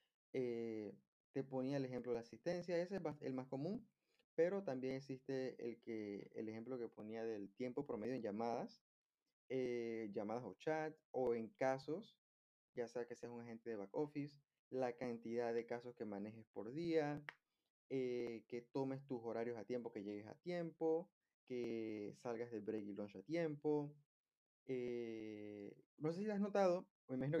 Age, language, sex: 20-39, Spanish, male